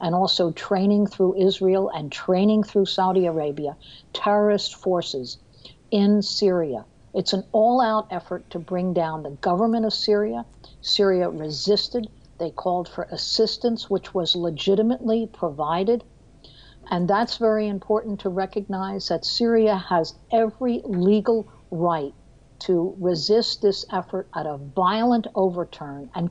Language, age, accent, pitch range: English, 60-79, American, 170-215 Hz